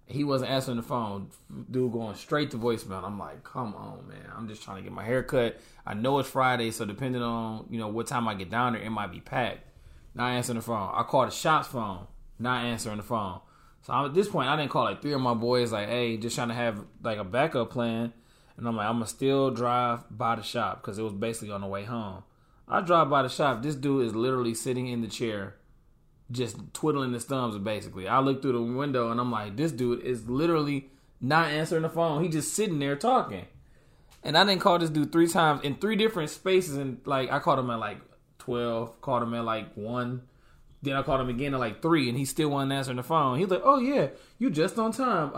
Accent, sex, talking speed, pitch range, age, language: American, male, 240 wpm, 115-160 Hz, 20-39, English